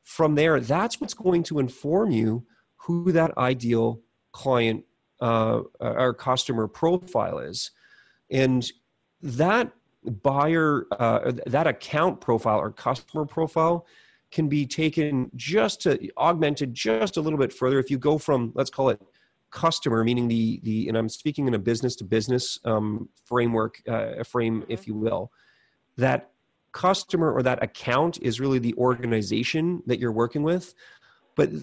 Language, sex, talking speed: English, male, 150 wpm